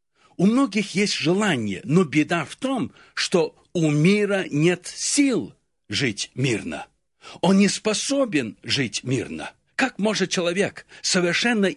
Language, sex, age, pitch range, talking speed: Russian, male, 60-79, 150-205 Hz, 120 wpm